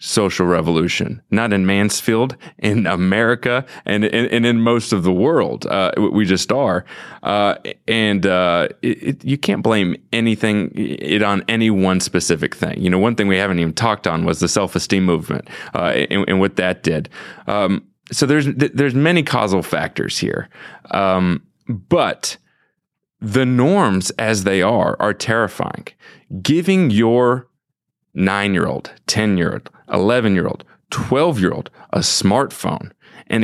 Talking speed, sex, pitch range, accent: 140 wpm, male, 95-125 Hz, American